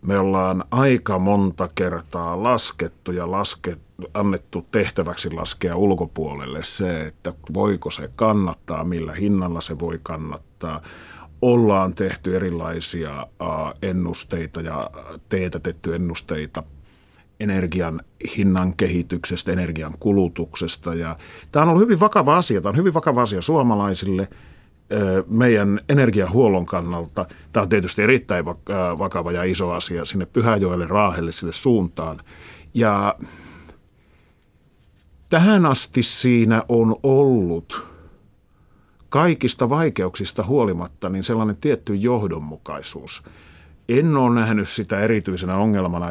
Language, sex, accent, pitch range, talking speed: Finnish, male, native, 85-110 Hz, 100 wpm